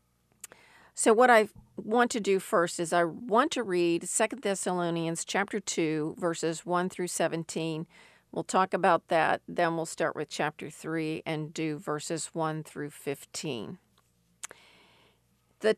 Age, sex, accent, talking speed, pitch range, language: 50-69, female, American, 140 wpm, 150-205 Hz, English